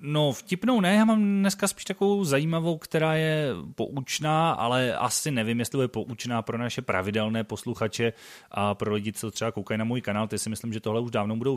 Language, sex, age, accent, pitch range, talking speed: Czech, male, 30-49, native, 105-135 Hz, 200 wpm